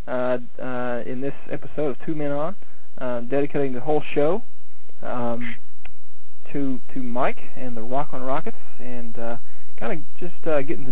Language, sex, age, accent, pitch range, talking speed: English, male, 20-39, American, 125-155 Hz, 170 wpm